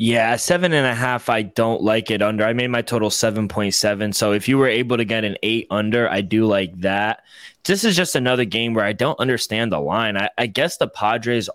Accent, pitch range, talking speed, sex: American, 105-125 Hz, 245 wpm, male